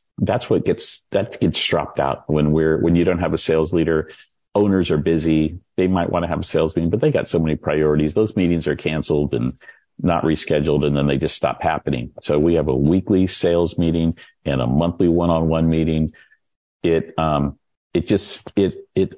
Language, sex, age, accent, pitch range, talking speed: English, male, 50-69, American, 75-95 Hz, 200 wpm